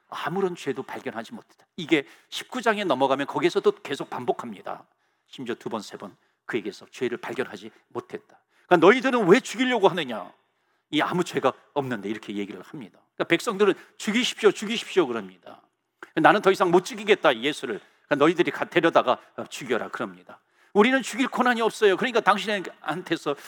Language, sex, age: Korean, male, 40-59